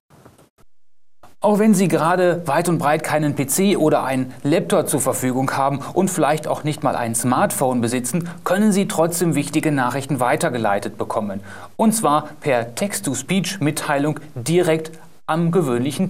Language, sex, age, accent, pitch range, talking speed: German, male, 30-49, German, 125-170 Hz, 140 wpm